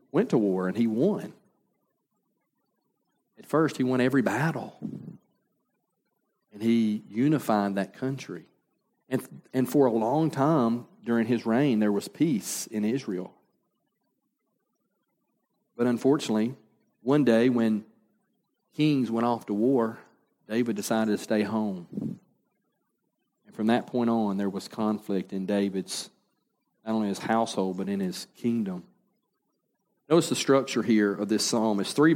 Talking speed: 135 wpm